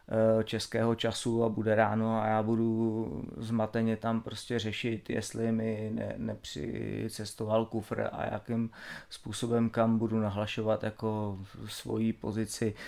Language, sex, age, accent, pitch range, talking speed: Czech, male, 30-49, native, 110-120 Hz, 120 wpm